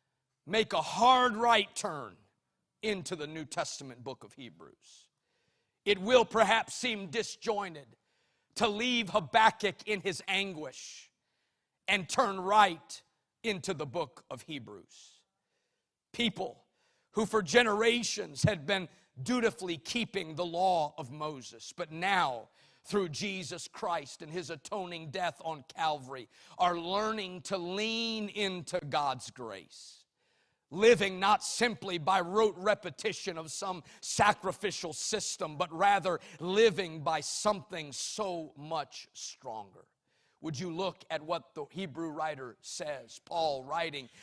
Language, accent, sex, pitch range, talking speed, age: English, American, male, 165-215 Hz, 120 wpm, 50-69